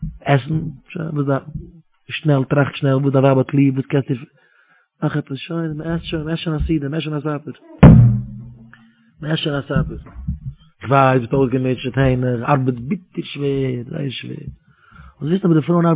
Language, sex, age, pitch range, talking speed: English, male, 30-49, 115-155 Hz, 85 wpm